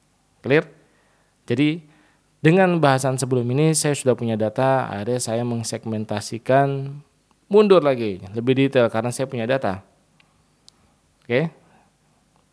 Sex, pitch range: male, 115-150 Hz